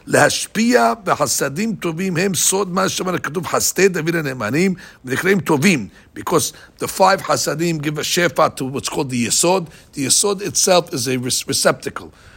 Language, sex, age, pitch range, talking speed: English, male, 60-79, 130-180 Hz, 85 wpm